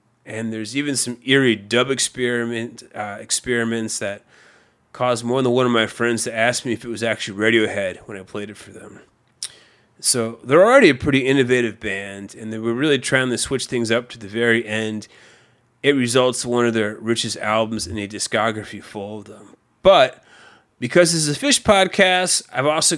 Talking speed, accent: 195 wpm, American